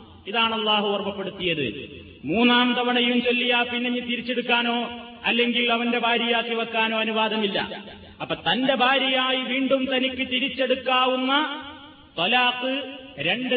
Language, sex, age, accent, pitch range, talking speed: Malayalam, male, 30-49, native, 240-265 Hz, 95 wpm